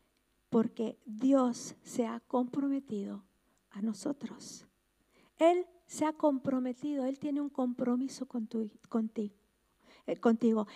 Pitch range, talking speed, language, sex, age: 255-315 Hz, 110 wpm, Spanish, female, 50-69